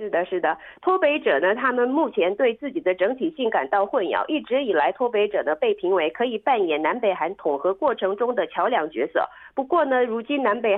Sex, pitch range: female, 195-305 Hz